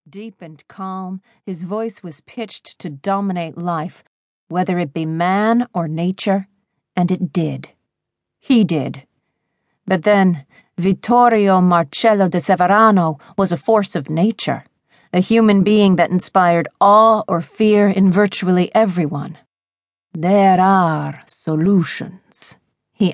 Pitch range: 170-210 Hz